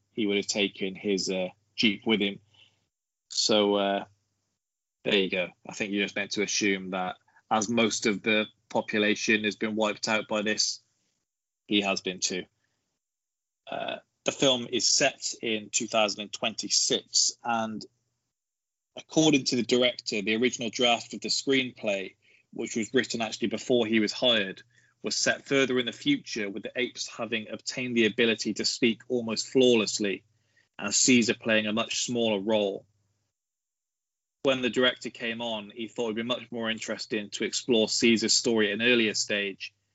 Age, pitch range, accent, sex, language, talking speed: 20-39, 105-120 Hz, British, male, English, 160 wpm